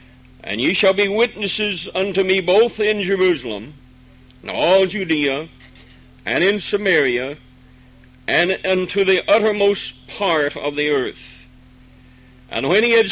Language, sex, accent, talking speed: English, male, American, 130 wpm